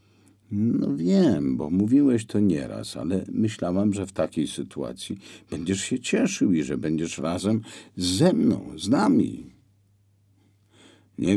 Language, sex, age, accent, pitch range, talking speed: Polish, male, 50-69, native, 100-125 Hz, 125 wpm